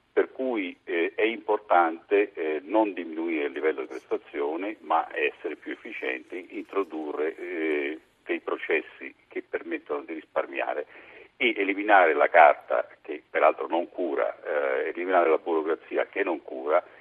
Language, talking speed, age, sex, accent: Italian, 140 wpm, 50-69, male, native